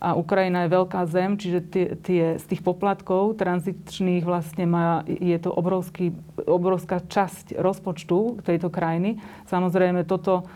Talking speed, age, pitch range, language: 135 wpm, 30-49, 170-185 Hz, Slovak